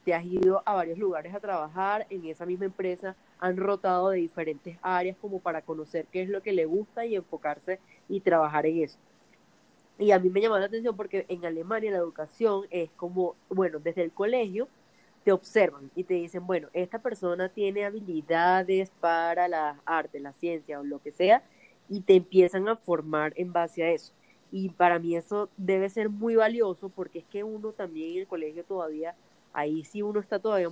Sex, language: female, Spanish